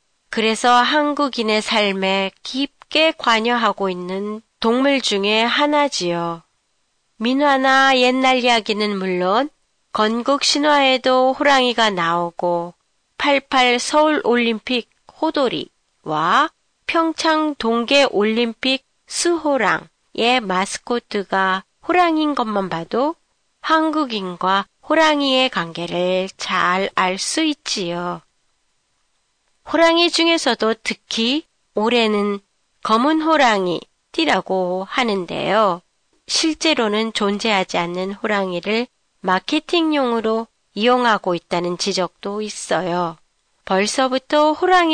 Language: Japanese